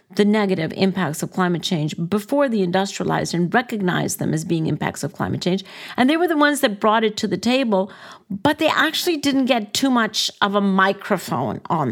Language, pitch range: English, 185-235 Hz